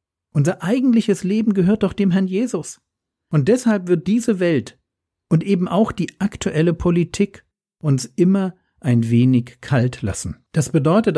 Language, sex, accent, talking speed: German, male, German, 145 wpm